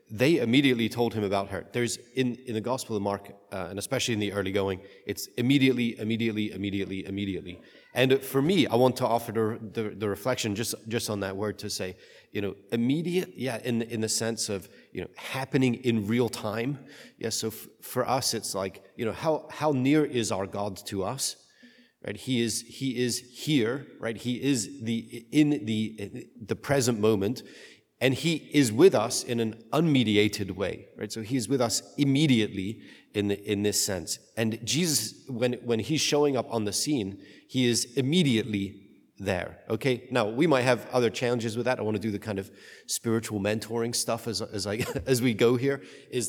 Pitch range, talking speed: 105-130 Hz, 200 wpm